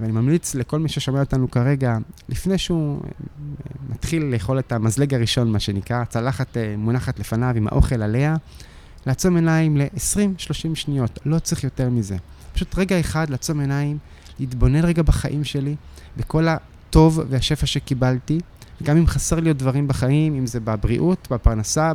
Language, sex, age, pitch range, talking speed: Hebrew, male, 20-39, 125-155 Hz, 150 wpm